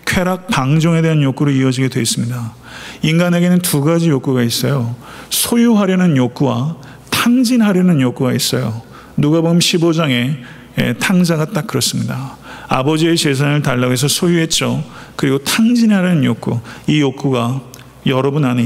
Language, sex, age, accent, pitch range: Korean, male, 40-59, native, 130-175 Hz